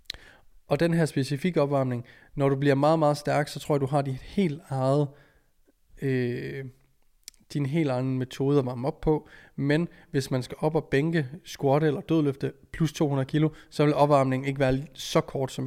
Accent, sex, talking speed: native, male, 190 wpm